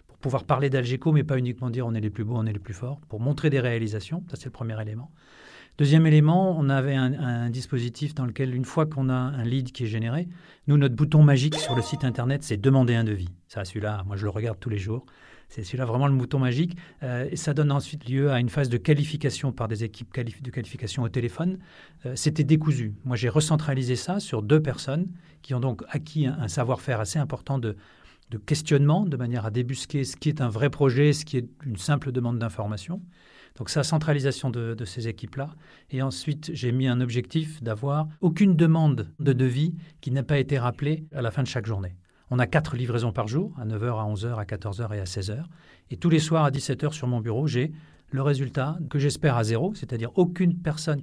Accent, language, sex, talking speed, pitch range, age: French, French, male, 230 wpm, 120-150 Hz, 40-59